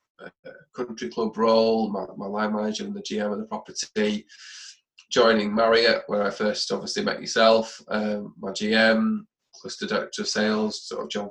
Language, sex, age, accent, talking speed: English, male, 20-39, British, 165 wpm